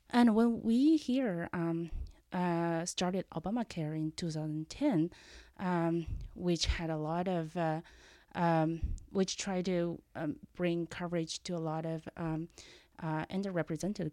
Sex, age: female, 30-49